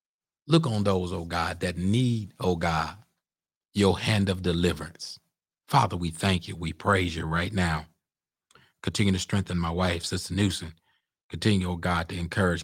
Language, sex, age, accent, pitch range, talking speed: English, male, 30-49, American, 85-100 Hz, 160 wpm